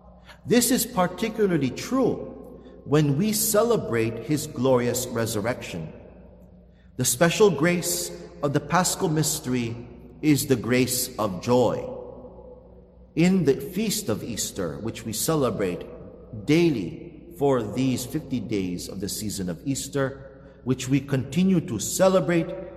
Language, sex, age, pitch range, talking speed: English, male, 50-69, 115-170 Hz, 120 wpm